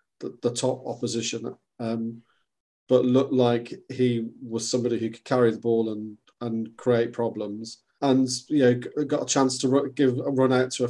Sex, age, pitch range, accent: male, 40-59, 115-135 Hz, British